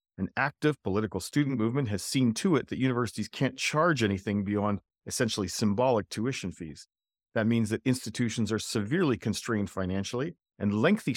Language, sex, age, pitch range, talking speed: English, male, 40-59, 100-130 Hz, 155 wpm